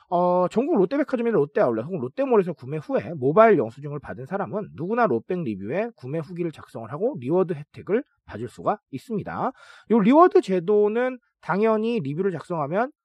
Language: Korean